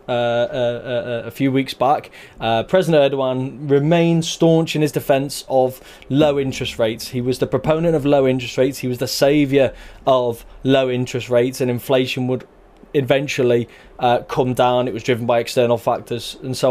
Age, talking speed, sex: 20-39, 180 wpm, male